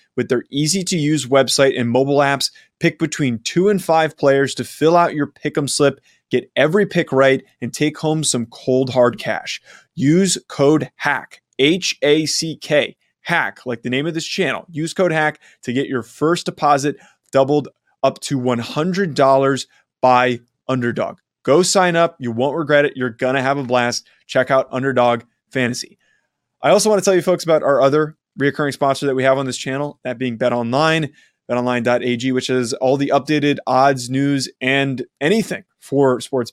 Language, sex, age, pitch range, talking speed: English, male, 20-39, 125-150 Hz, 175 wpm